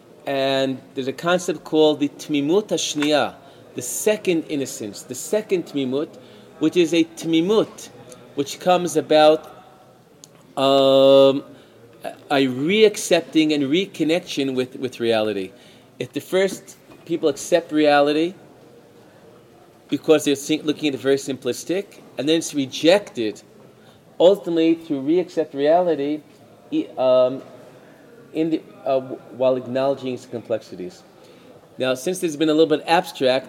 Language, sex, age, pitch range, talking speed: Hebrew, male, 40-59, 130-160 Hz, 120 wpm